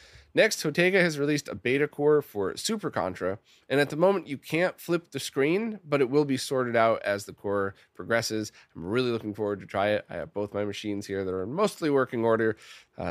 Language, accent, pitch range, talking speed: English, American, 105-160 Hz, 220 wpm